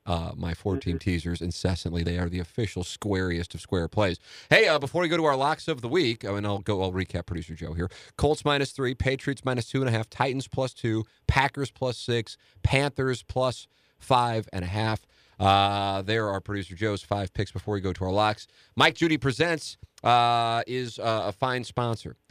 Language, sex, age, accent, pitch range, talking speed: English, male, 40-59, American, 95-120 Hz, 205 wpm